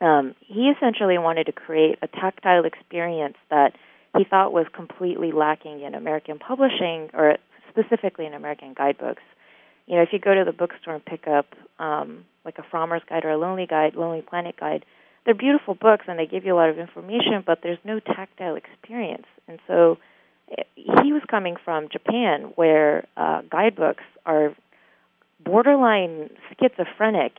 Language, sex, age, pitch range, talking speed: English, female, 30-49, 155-190 Hz, 165 wpm